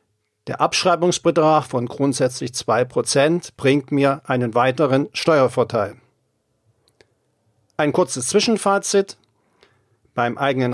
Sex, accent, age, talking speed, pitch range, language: male, German, 50-69, 85 wpm, 120-155 Hz, German